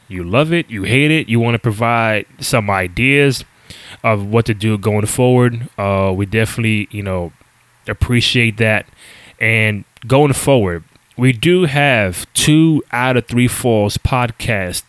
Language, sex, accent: English, male, American